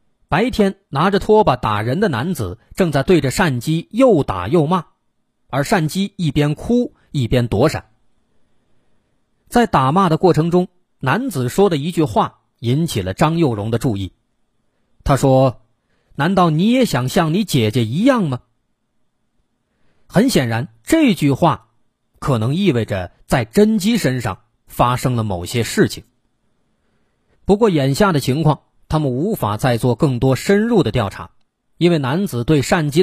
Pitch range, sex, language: 115-175 Hz, male, Chinese